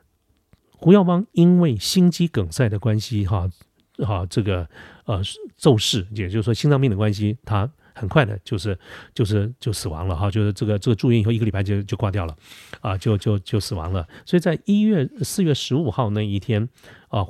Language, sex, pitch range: Chinese, male, 100-135 Hz